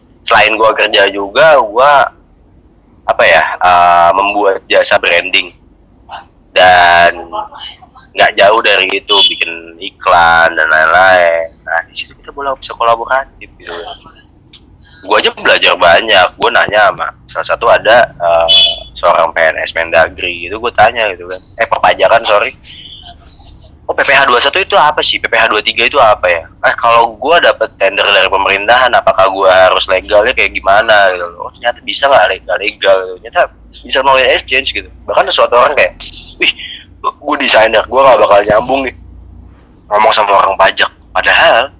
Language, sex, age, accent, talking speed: Indonesian, male, 20-39, native, 150 wpm